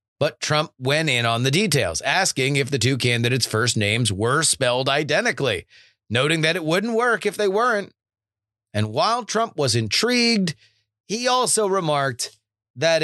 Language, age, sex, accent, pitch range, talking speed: English, 30-49, male, American, 110-155 Hz, 155 wpm